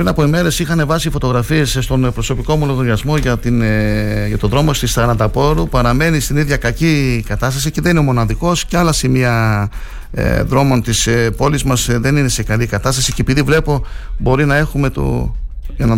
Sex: male